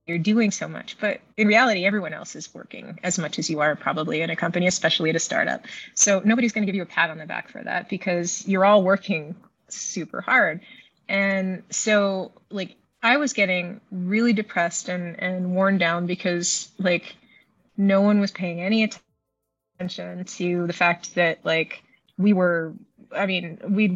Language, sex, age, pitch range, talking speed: English, female, 20-39, 175-205 Hz, 185 wpm